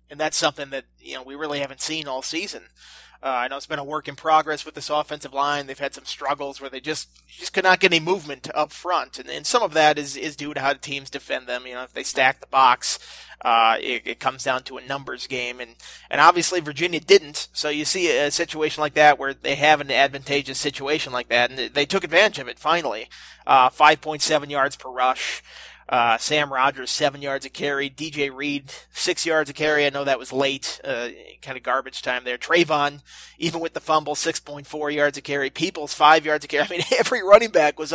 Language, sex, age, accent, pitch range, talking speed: English, male, 30-49, American, 135-155 Hz, 230 wpm